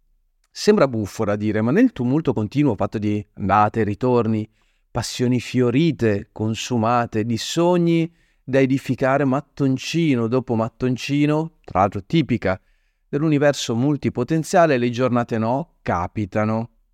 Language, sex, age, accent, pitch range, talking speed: Italian, male, 30-49, native, 115-150 Hz, 110 wpm